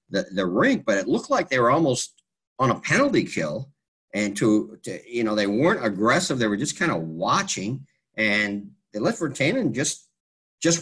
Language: English